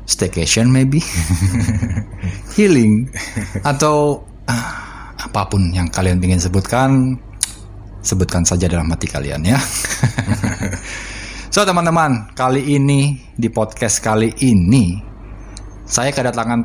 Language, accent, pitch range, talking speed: Indonesian, native, 95-115 Hz, 90 wpm